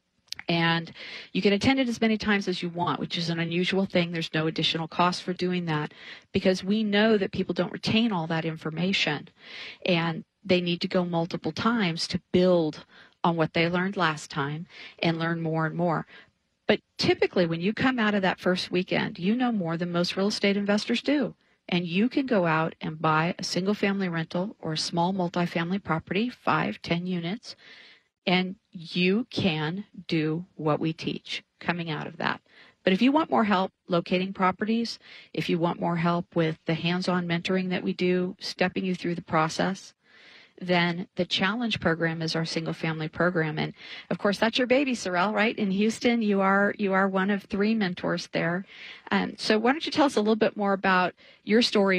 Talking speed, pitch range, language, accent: 195 wpm, 170-205 Hz, English, American